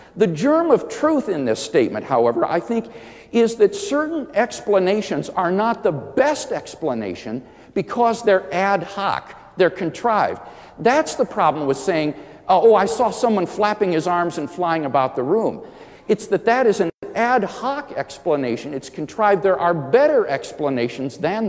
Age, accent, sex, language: 50-69, American, male, English